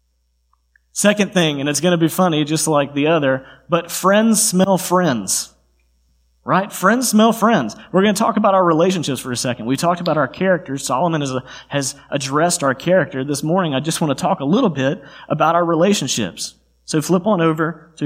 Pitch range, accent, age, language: 120-160 Hz, American, 30-49, English